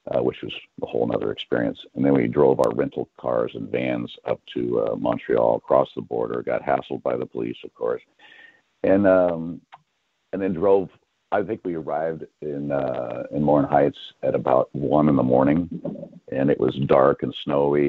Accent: American